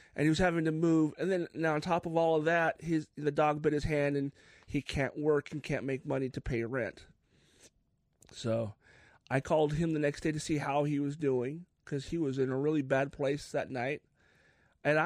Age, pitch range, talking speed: 30-49, 150-195 Hz, 225 wpm